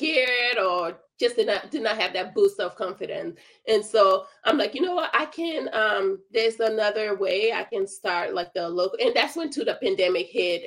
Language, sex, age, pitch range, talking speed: English, female, 20-39, 185-260 Hz, 215 wpm